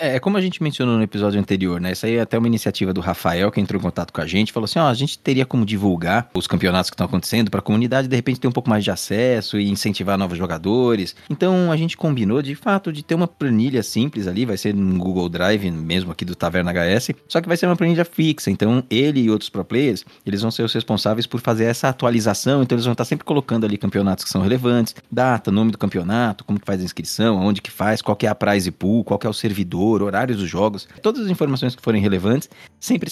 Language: Portuguese